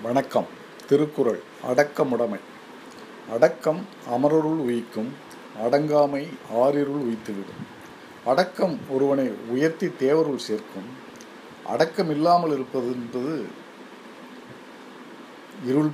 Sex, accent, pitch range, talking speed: male, native, 130-175 Hz, 65 wpm